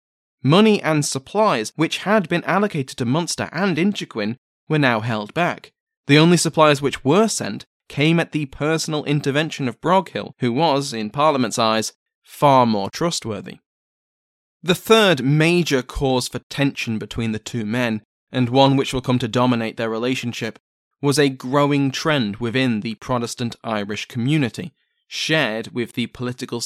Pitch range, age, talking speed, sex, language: 120-155 Hz, 20-39, 155 wpm, male, English